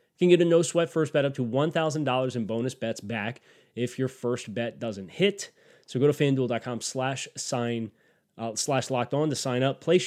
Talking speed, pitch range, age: 195 wpm, 115-150 Hz, 20-39